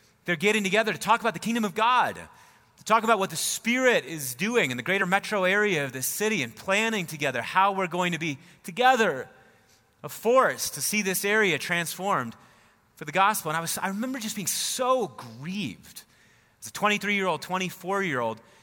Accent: American